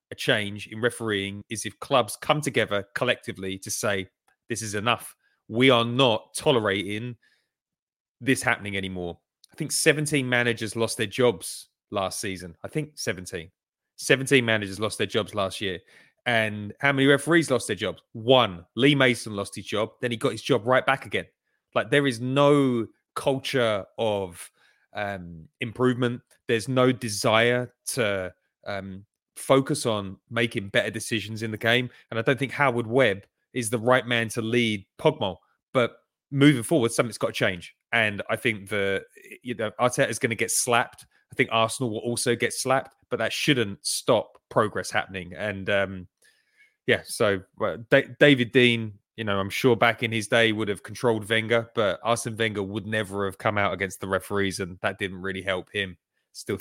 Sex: male